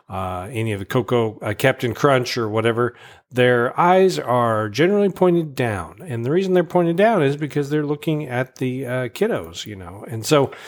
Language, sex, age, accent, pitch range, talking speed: English, male, 40-59, American, 110-140 Hz, 190 wpm